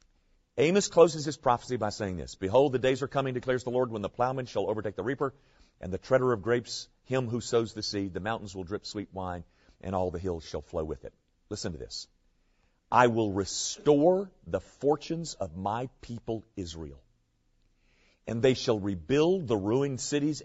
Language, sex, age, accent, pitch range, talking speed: English, male, 50-69, American, 90-130 Hz, 190 wpm